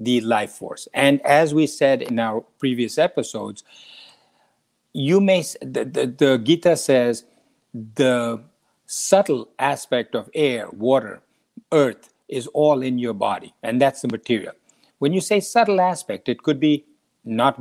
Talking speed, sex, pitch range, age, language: 145 wpm, male, 120-170 Hz, 50-69, English